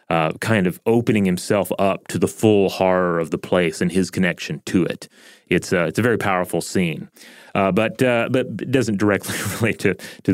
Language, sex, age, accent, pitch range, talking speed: English, male, 30-49, American, 95-110 Hz, 205 wpm